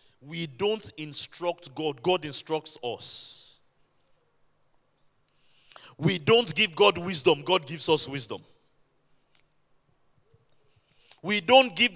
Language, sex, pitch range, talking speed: English, male, 135-180 Hz, 95 wpm